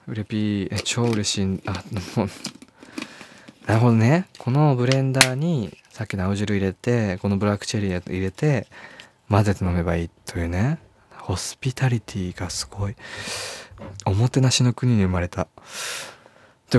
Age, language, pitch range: 20-39, Japanese, 90-115 Hz